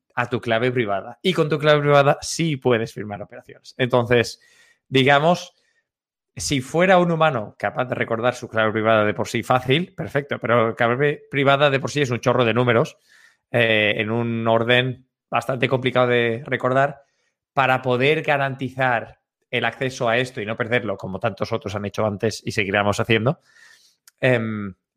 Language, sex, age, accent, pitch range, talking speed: Spanish, male, 20-39, Spanish, 115-140 Hz, 170 wpm